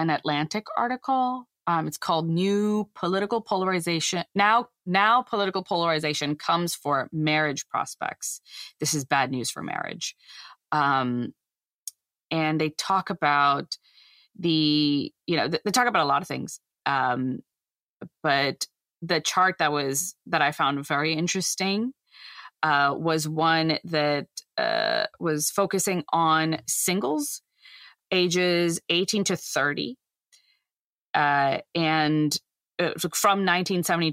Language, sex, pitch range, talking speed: English, female, 150-185 Hz, 120 wpm